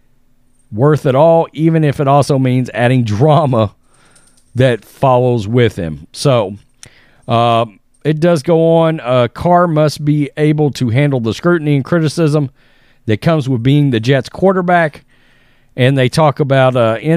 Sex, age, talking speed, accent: male, 40-59, 150 wpm, American